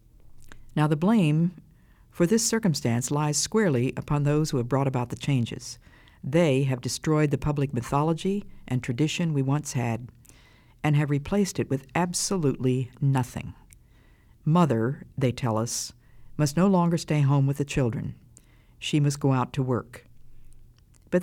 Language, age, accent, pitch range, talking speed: English, 50-69, American, 120-155 Hz, 150 wpm